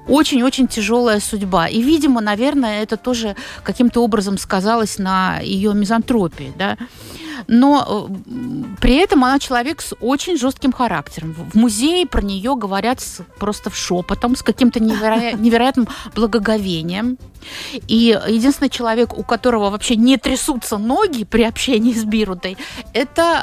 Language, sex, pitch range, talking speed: Russian, female, 200-260 Hz, 135 wpm